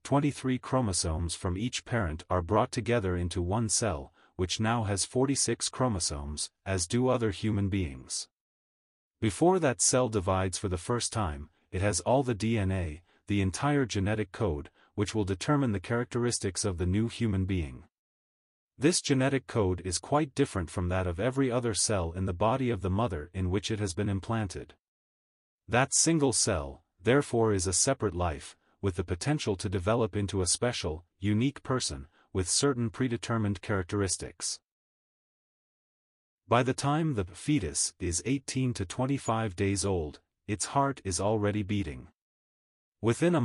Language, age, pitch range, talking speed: English, 30-49, 90-120 Hz, 155 wpm